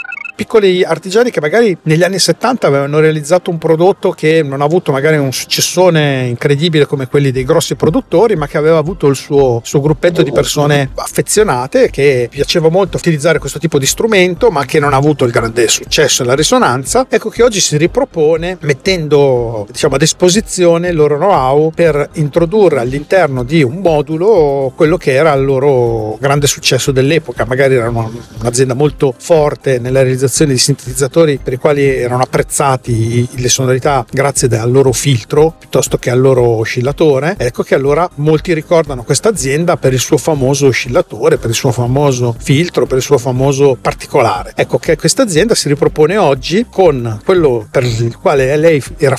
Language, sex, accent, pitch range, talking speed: Italian, male, native, 130-165 Hz, 175 wpm